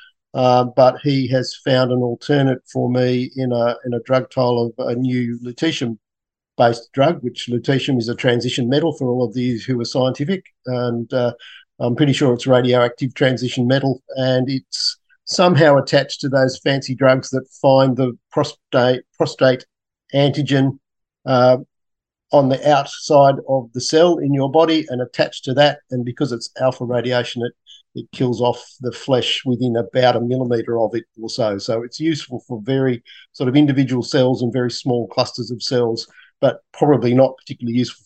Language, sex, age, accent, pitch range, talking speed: English, male, 50-69, Australian, 120-140 Hz, 170 wpm